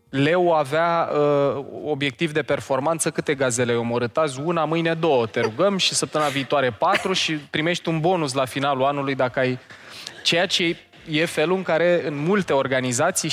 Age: 20-39